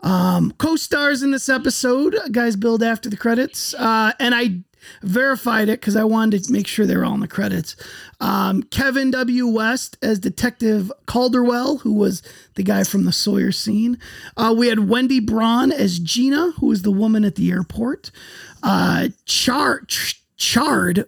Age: 30-49